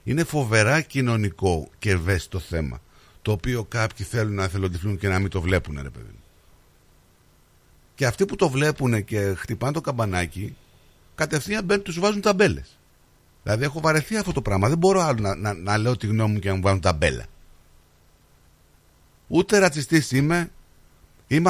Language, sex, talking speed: Greek, male, 160 wpm